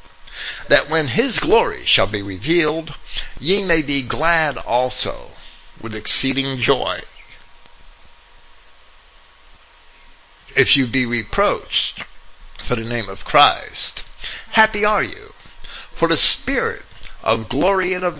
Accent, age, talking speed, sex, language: American, 60-79, 110 wpm, male, English